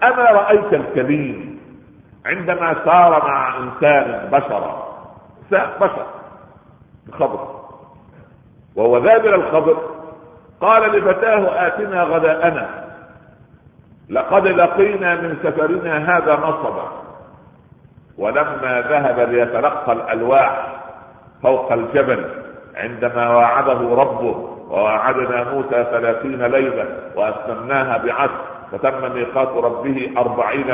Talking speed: 85 wpm